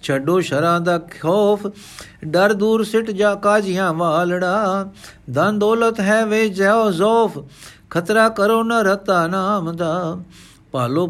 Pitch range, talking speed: 170-215 Hz, 130 wpm